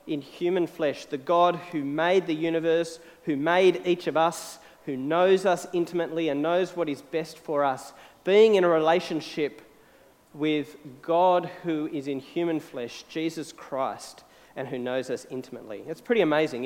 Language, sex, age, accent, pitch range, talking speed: English, male, 40-59, Australian, 145-190 Hz, 165 wpm